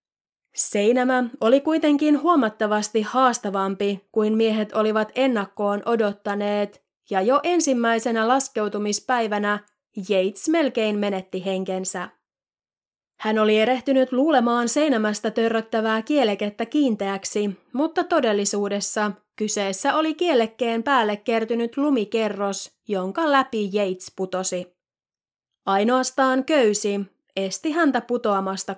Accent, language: native, Finnish